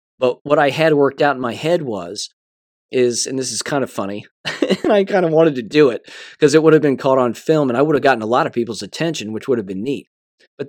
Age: 20-39